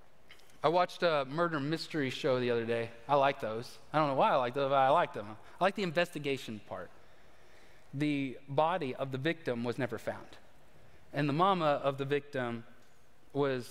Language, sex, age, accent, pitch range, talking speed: English, male, 30-49, American, 130-190 Hz, 190 wpm